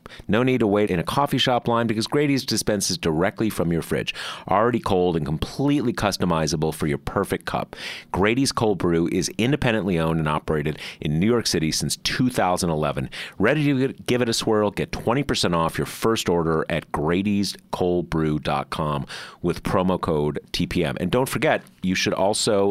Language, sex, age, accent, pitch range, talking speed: English, male, 30-49, American, 85-115 Hz, 165 wpm